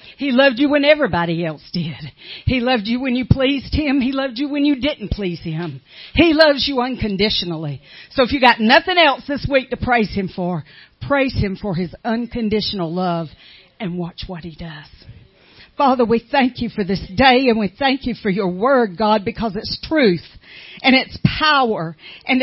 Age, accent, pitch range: 50-69, American, 205-275 Hz